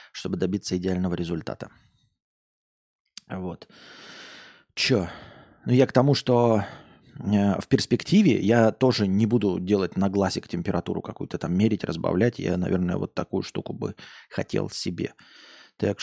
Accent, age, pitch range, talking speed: native, 20-39, 95-120 Hz, 125 wpm